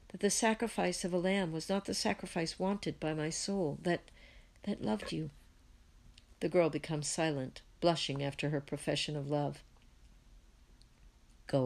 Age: 60-79